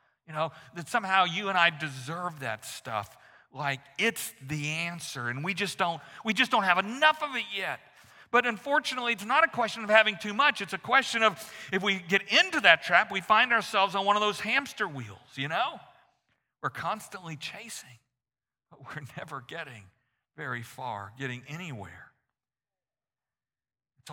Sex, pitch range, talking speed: male, 145-205 Hz, 170 wpm